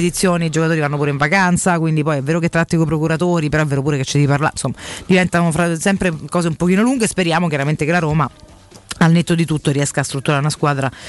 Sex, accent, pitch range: female, native, 145-195 Hz